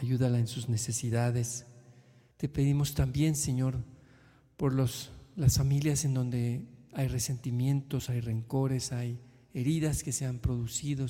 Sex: male